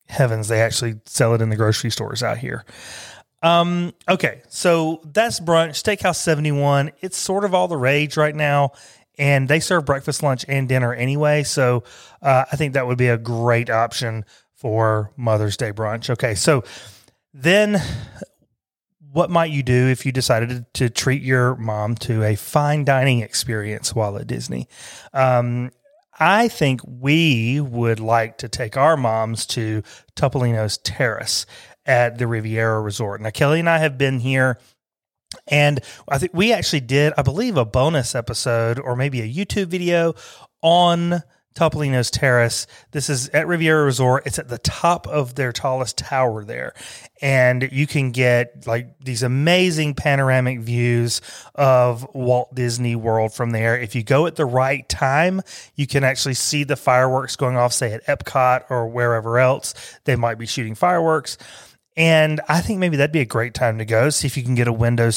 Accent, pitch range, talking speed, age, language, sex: American, 120-150 Hz, 170 wpm, 30-49, English, male